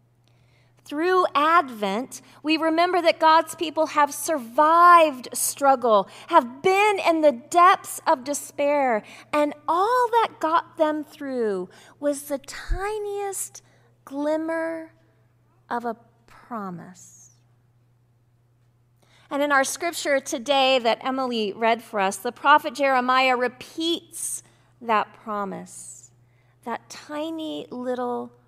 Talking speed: 105 wpm